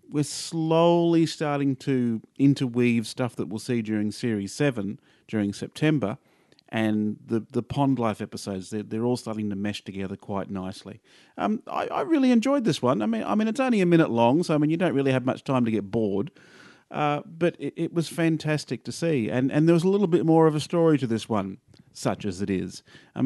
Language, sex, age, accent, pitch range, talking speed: English, male, 40-59, Australian, 105-145 Hz, 215 wpm